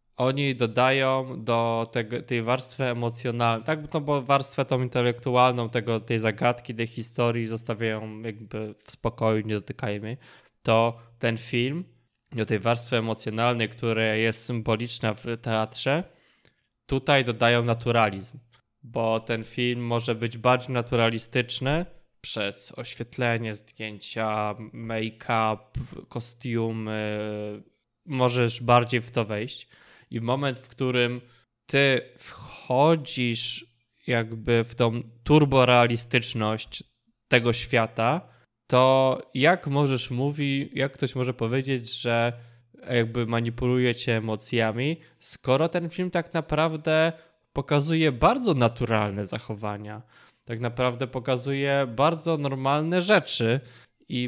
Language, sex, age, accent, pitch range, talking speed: Polish, male, 20-39, native, 115-135 Hz, 105 wpm